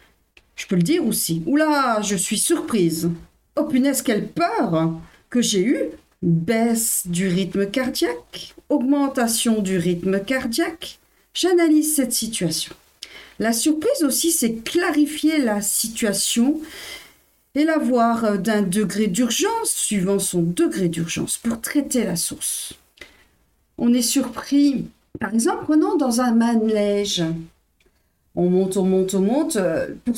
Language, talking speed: French, 125 wpm